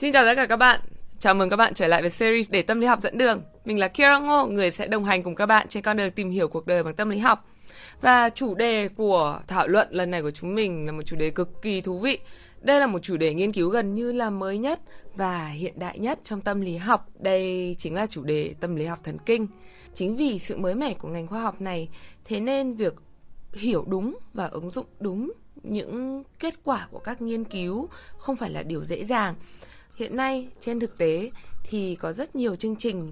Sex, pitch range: female, 180-235 Hz